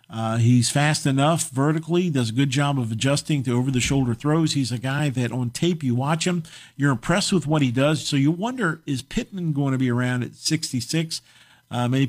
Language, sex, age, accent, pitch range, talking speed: English, male, 50-69, American, 125-150 Hz, 210 wpm